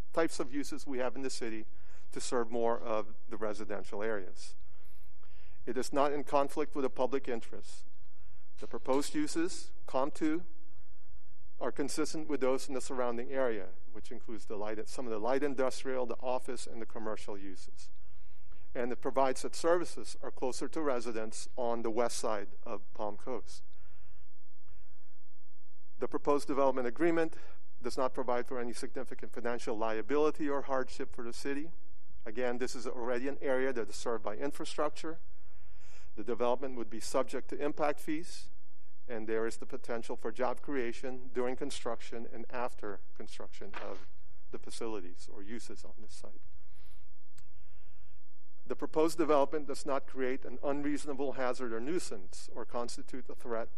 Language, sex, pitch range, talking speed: English, male, 105-140 Hz, 155 wpm